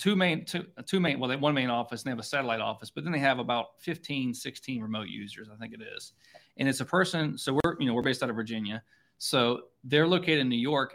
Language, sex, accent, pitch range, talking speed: English, male, American, 120-155 Hz, 270 wpm